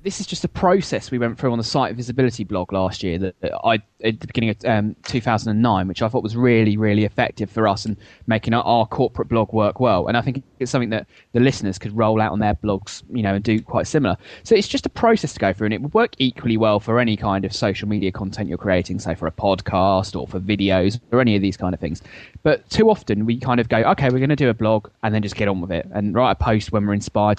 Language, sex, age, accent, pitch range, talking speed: English, male, 20-39, British, 105-130 Hz, 275 wpm